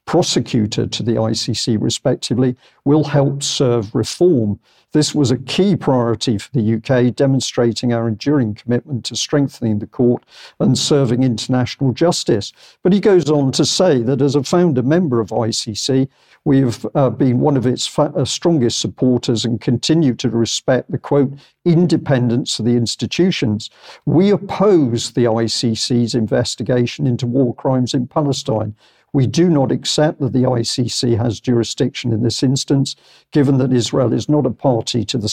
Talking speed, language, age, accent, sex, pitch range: 160 wpm, English, 50-69, British, male, 120-140 Hz